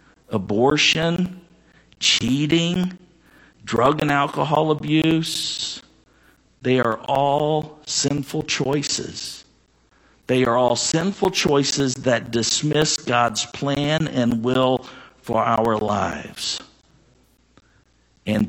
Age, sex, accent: 50-69, male, American